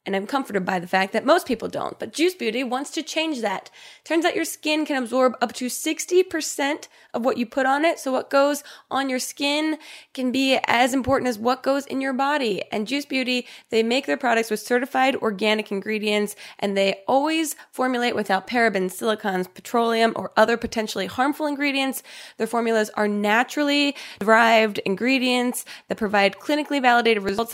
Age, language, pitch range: 20-39, English, 220-285 Hz